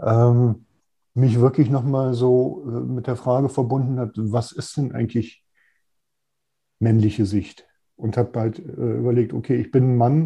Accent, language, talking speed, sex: German, German, 145 wpm, male